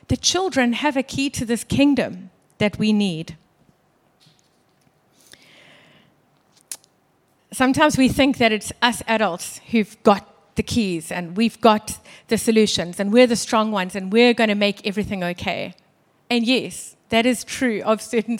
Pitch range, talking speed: 205-240 Hz, 150 wpm